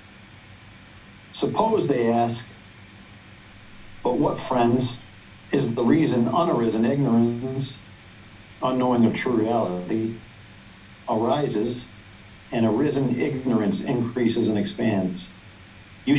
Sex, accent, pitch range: male, American, 100-125 Hz